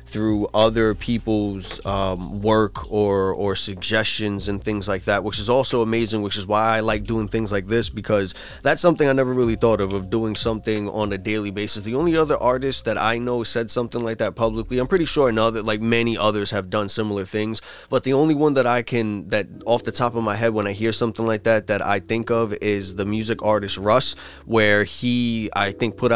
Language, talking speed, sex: English, 225 wpm, male